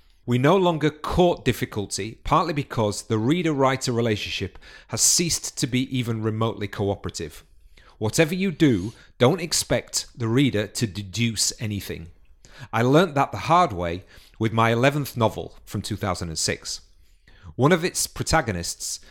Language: English